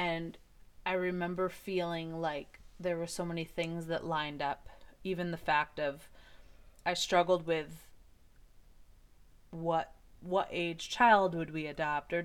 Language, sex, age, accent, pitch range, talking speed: English, female, 20-39, American, 145-170 Hz, 135 wpm